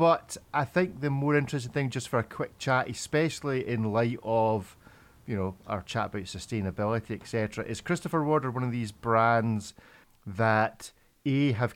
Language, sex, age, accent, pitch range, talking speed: English, male, 40-59, British, 105-130 Hz, 175 wpm